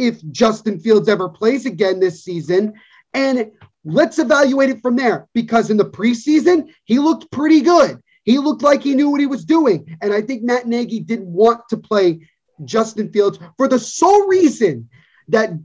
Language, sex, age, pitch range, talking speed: English, male, 30-49, 210-275 Hz, 180 wpm